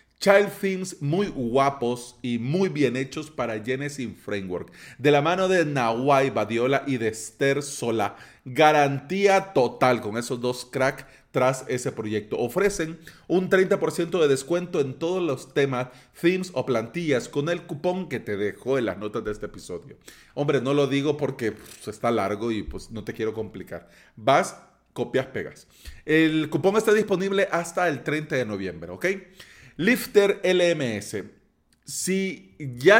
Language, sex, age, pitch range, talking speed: Spanish, male, 30-49, 125-180 Hz, 155 wpm